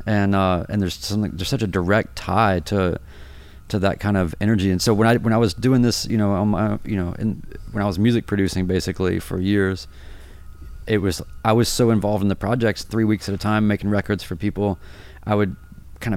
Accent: American